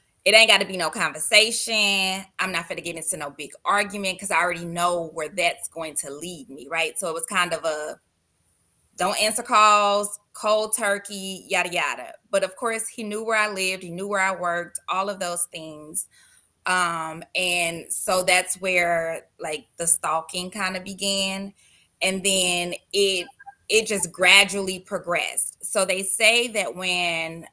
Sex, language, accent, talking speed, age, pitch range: female, English, American, 175 wpm, 20-39, 170-200 Hz